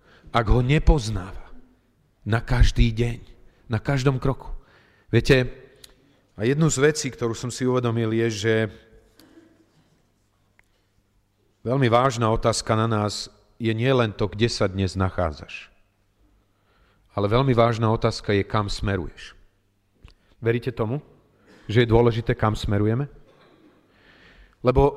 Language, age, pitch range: Slovak, 40-59, 100-125 Hz